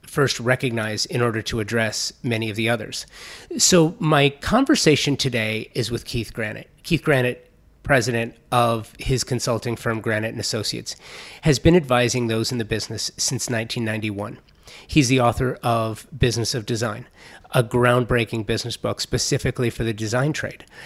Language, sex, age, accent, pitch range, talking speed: English, male, 30-49, American, 110-130 Hz, 150 wpm